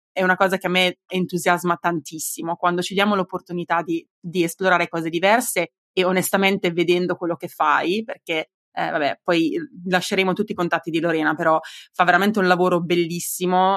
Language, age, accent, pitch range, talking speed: Italian, 20-39, native, 170-190 Hz, 170 wpm